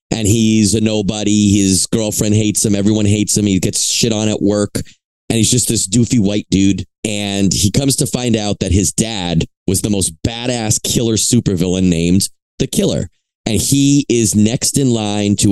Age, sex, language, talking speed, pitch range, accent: 30-49, male, English, 190 wpm, 95-120 Hz, American